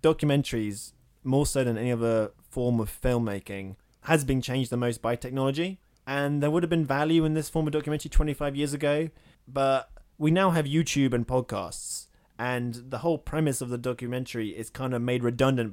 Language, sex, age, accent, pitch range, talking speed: English, male, 20-39, British, 115-150 Hz, 185 wpm